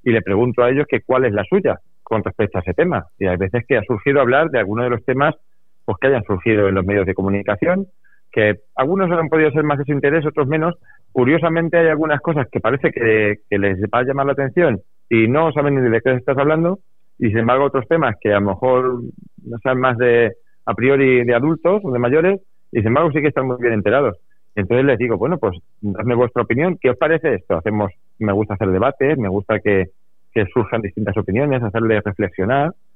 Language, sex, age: Spanish, male, 40-59